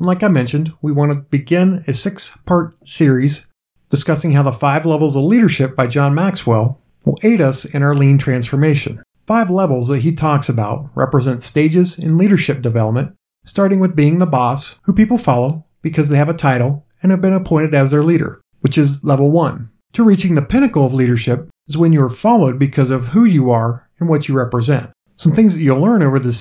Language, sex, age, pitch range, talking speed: English, male, 40-59, 130-170 Hz, 200 wpm